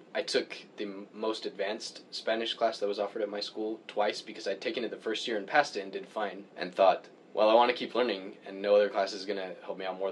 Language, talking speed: English, 275 wpm